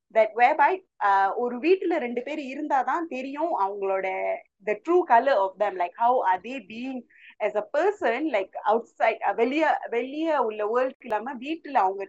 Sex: female